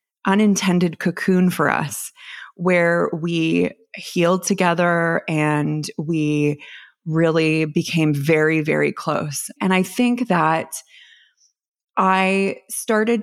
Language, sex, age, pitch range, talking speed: English, female, 20-39, 155-190 Hz, 95 wpm